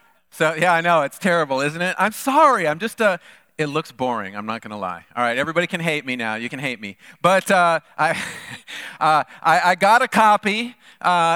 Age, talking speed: 40-59, 215 wpm